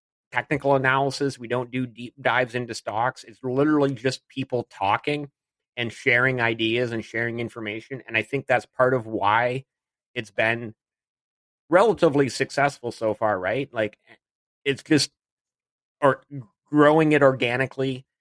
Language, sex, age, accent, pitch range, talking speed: English, male, 30-49, American, 115-140 Hz, 135 wpm